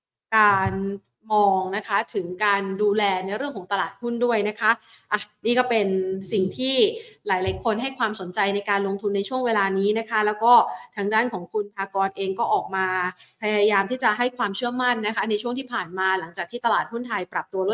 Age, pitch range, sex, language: 30-49, 200-245 Hz, female, Thai